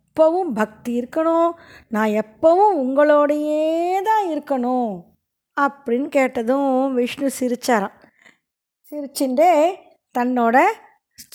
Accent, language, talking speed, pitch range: native, Tamil, 75 wpm, 225-305 Hz